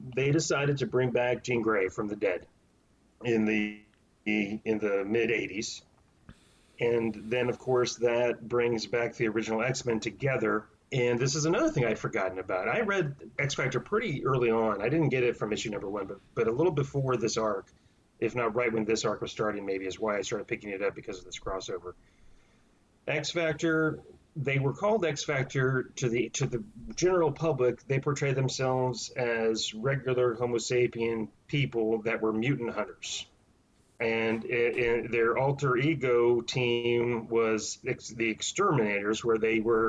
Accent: American